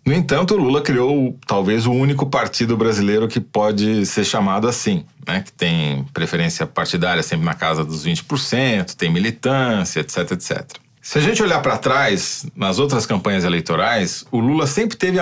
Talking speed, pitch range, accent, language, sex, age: 170 wpm, 110-140 Hz, Brazilian, Portuguese, male, 40-59